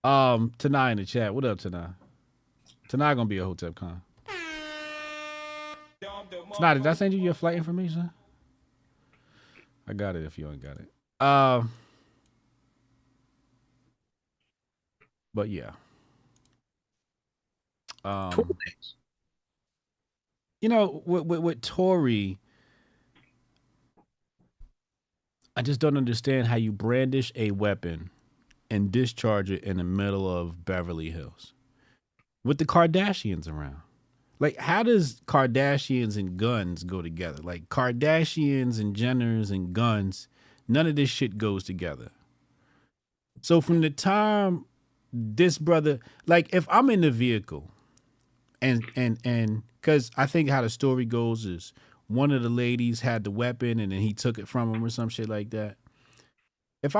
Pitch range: 105-145 Hz